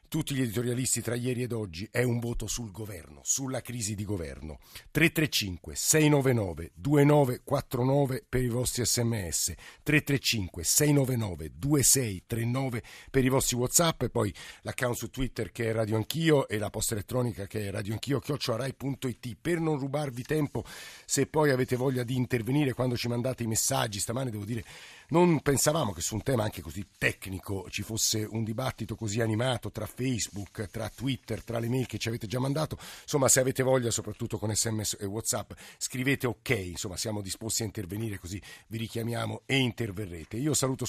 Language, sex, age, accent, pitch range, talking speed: Italian, male, 50-69, native, 105-130 Hz, 165 wpm